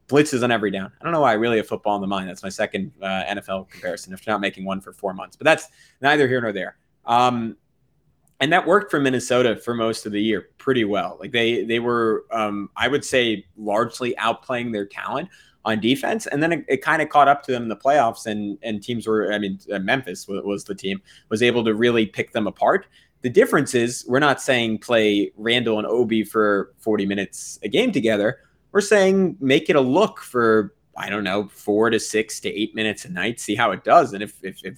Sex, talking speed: male, 235 wpm